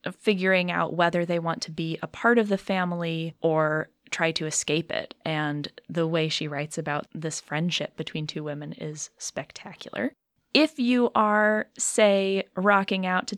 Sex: female